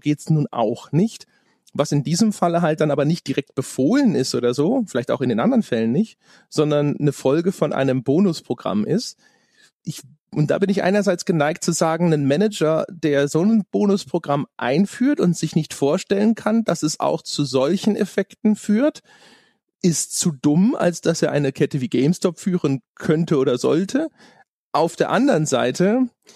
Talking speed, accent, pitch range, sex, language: 175 wpm, German, 140-190 Hz, male, German